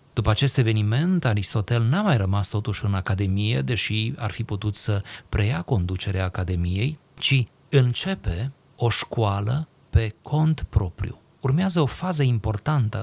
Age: 30-49